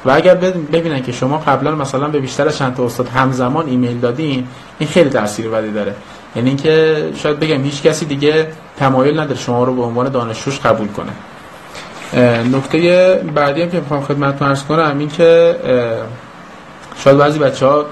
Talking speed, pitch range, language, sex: 165 wpm, 125-155 Hz, Persian, male